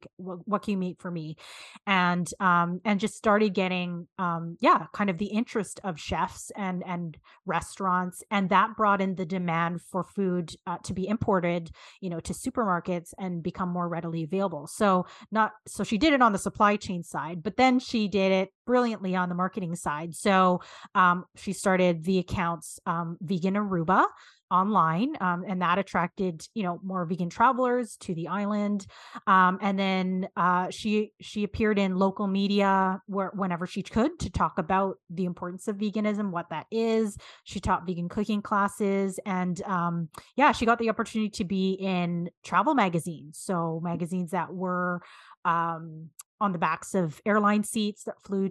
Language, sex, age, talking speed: English, female, 30-49, 175 wpm